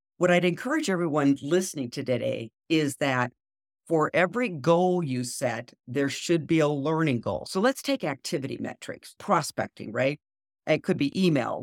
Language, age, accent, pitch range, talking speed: English, 50-69, American, 135-180 Hz, 160 wpm